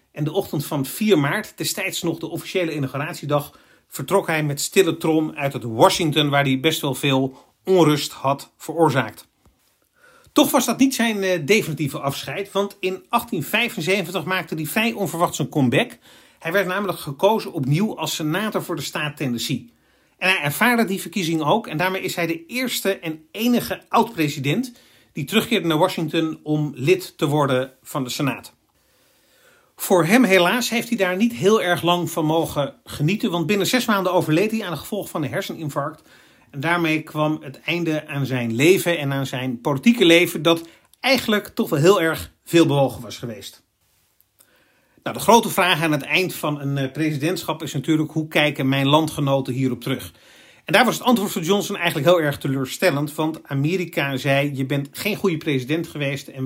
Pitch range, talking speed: 145-190 Hz, 175 wpm